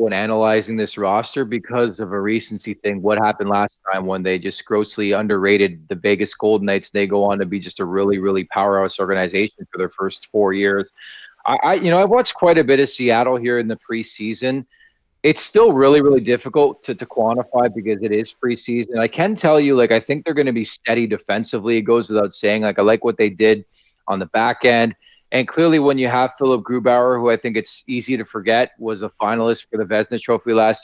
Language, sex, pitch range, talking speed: English, male, 105-125 Hz, 220 wpm